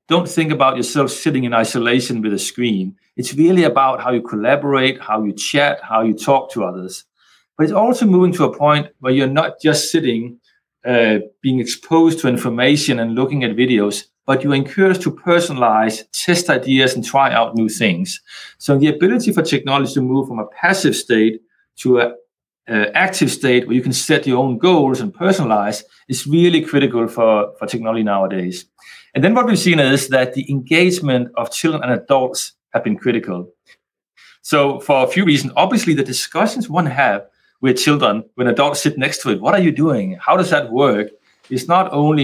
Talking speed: 190 wpm